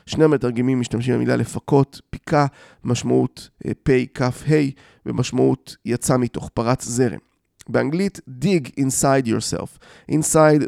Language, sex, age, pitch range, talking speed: Hebrew, male, 20-39, 120-155 Hz, 120 wpm